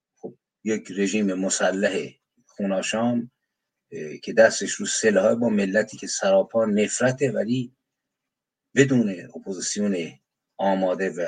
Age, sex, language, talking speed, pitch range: 50-69, male, Persian, 95 wpm, 110-140 Hz